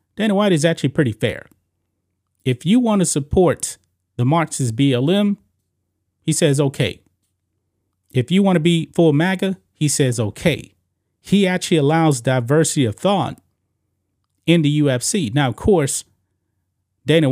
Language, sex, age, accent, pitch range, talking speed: English, male, 30-49, American, 100-155 Hz, 140 wpm